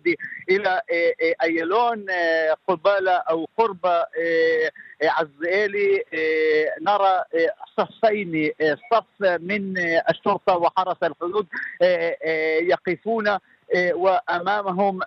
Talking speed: 65 wpm